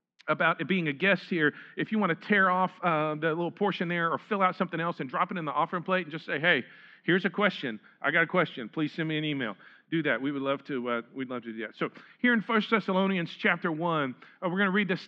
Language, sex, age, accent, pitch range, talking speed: English, male, 40-59, American, 165-210 Hz, 280 wpm